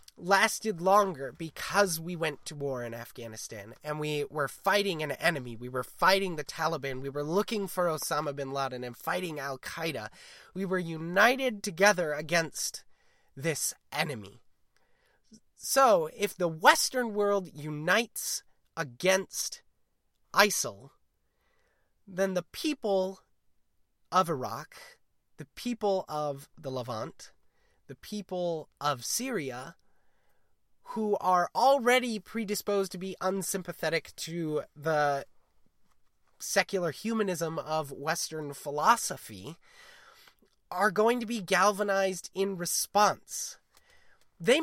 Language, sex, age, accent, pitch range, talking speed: English, male, 30-49, American, 150-210 Hz, 110 wpm